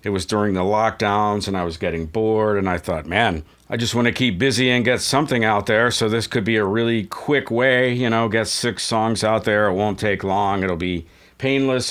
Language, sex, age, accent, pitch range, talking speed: English, male, 50-69, American, 95-115 Hz, 235 wpm